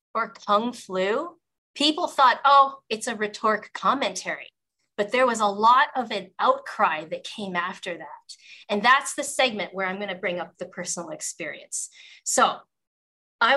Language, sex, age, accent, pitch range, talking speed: English, female, 30-49, American, 200-270 Hz, 165 wpm